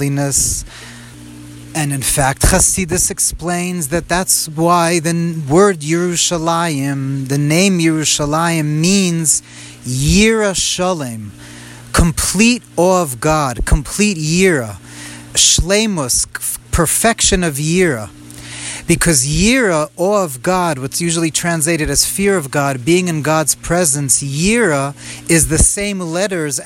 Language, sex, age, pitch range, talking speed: English, male, 30-49, 140-175 Hz, 110 wpm